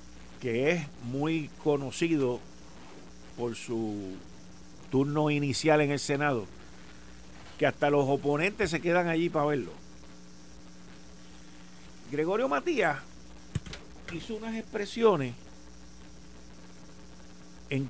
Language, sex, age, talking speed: Spanish, male, 50-69, 85 wpm